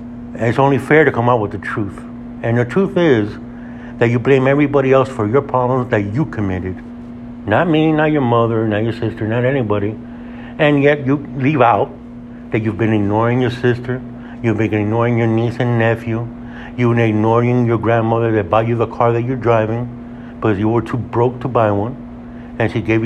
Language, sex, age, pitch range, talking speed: English, male, 60-79, 115-125 Hz, 200 wpm